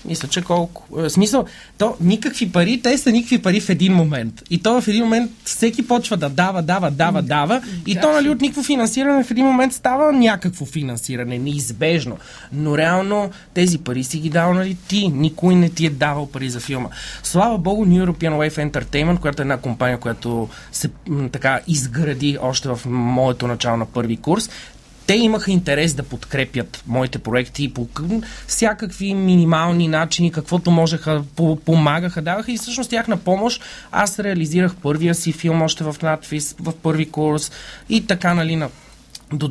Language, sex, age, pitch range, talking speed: Bulgarian, male, 30-49, 140-190 Hz, 175 wpm